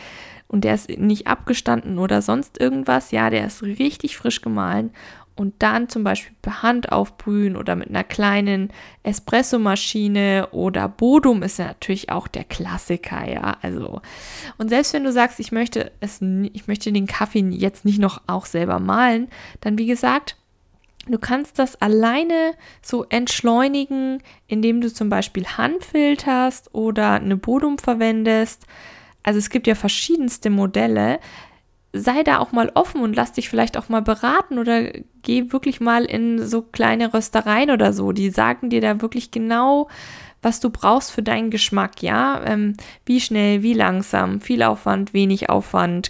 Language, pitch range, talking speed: German, 195-245 Hz, 160 wpm